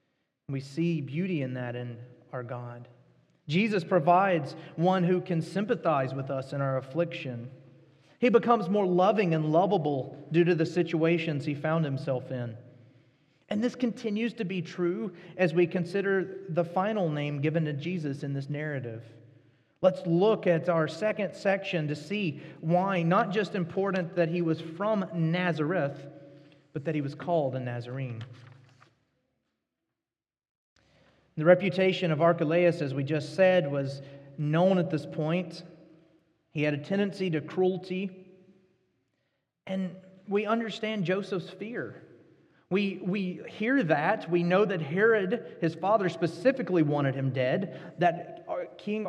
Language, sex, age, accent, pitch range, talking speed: English, male, 30-49, American, 145-185 Hz, 140 wpm